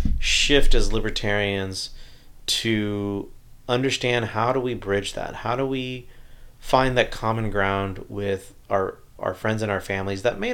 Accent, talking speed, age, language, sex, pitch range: American, 150 wpm, 30-49, English, male, 100-120 Hz